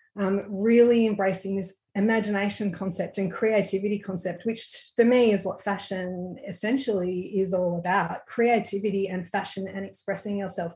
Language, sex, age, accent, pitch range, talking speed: English, female, 30-49, Australian, 190-215 Hz, 140 wpm